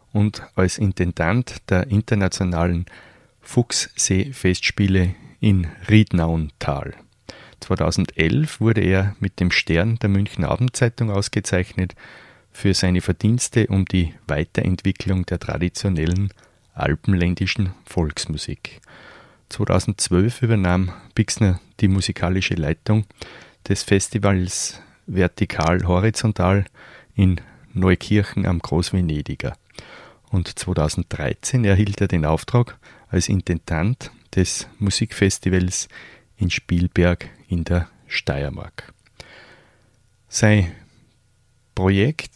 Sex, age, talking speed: male, 30-49, 85 wpm